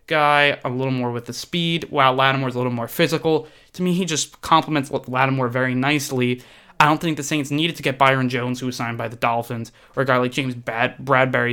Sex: male